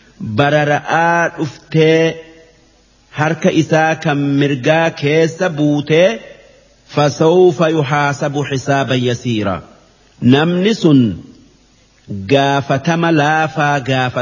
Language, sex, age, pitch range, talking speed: Arabic, male, 50-69, 130-160 Hz, 90 wpm